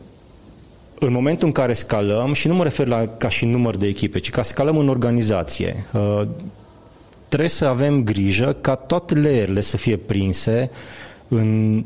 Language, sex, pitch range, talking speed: Romanian, male, 105-125 Hz, 155 wpm